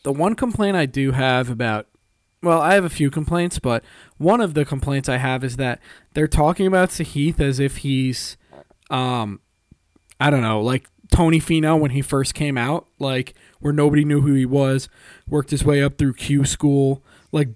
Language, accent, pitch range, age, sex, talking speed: English, American, 125-150 Hz, 20-39, male, 190 wpm